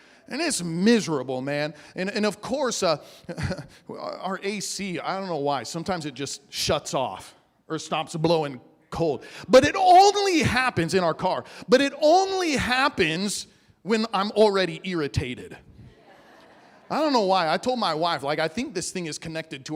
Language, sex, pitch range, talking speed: English, male, 155-230 Hz, 165 wpm